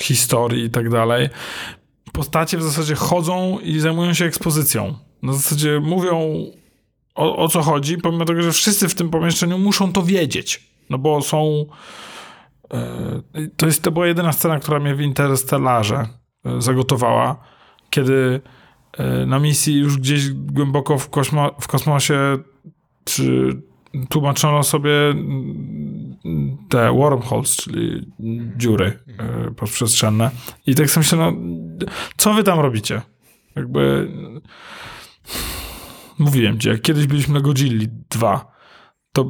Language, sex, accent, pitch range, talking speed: Polish, male, native, 125-155 Hz, 125 wpm